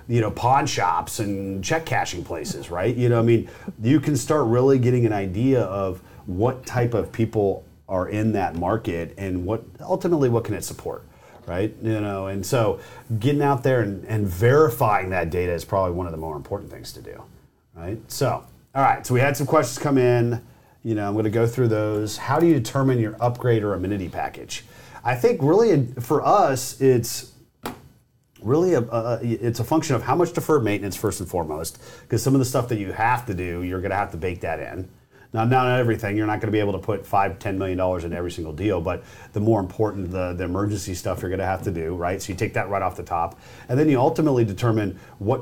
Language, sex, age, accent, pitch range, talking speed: English, male, 40-59, American, 95-125 Hz, 230 wpm